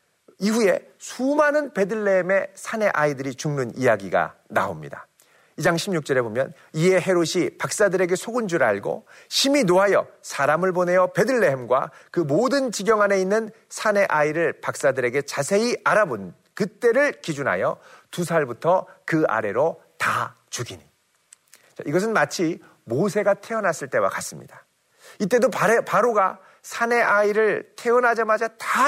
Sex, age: male, 40-59